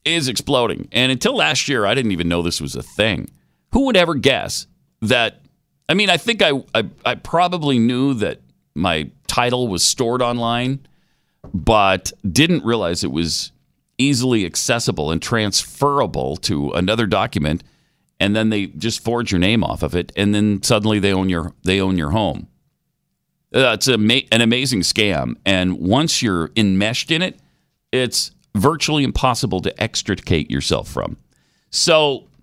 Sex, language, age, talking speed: male, English, 40-59, 160 wpm